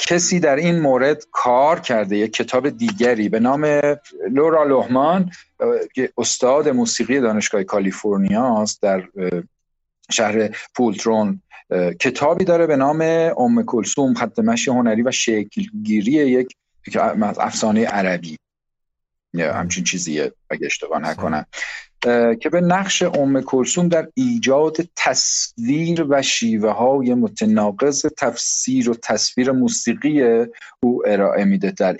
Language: Persian